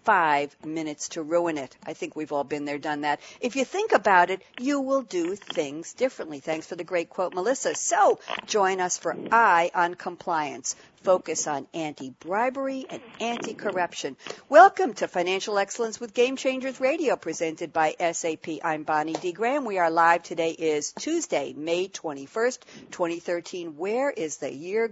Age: 60-79